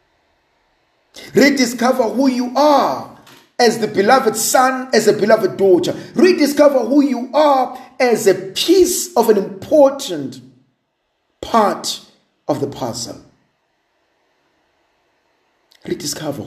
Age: 50-69